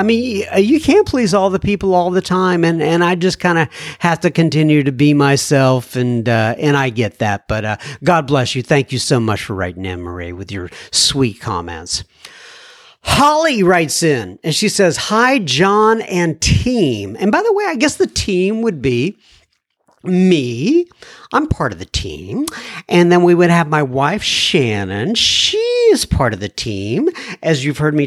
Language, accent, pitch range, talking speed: English, American, 150-235 Hz, 190 wpm